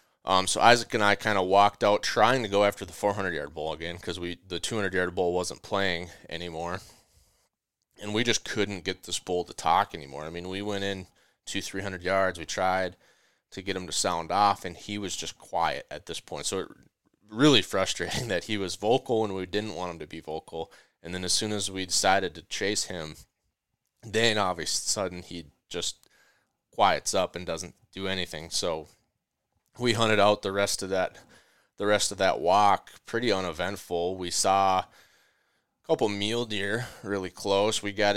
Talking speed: 190 wpm